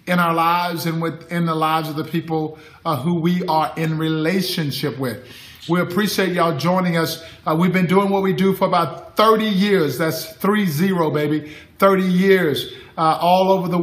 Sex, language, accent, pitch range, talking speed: male, English, American, 160-185 Hz, 180 wpm